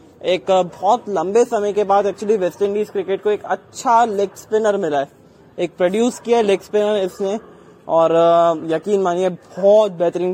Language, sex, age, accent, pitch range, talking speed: English, male, 20-39, Indian, 170-200 Hz, 155 wpm